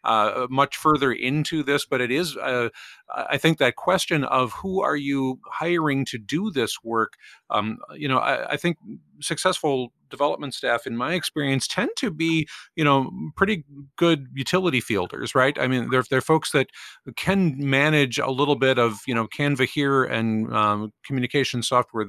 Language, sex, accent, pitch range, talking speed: English, male, American, 125-155 Hz, 175 wpm